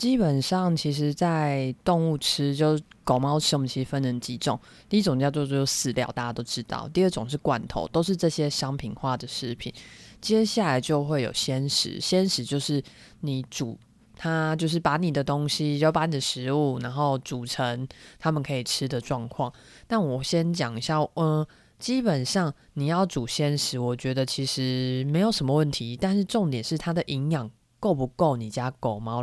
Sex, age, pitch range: female, 20-39, 130-165 Hz